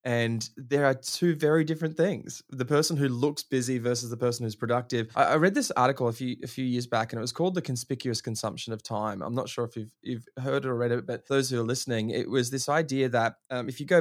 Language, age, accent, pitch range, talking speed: English, 20-39, Australian, 115-135 Hz, 255 wpm